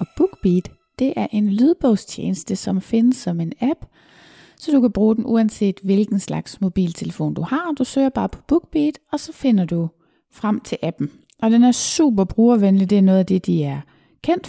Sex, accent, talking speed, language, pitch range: female, native, 195 wpm, Danish, 185-240 Hz